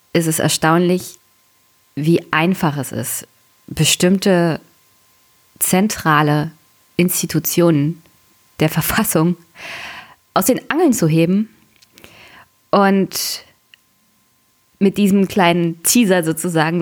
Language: German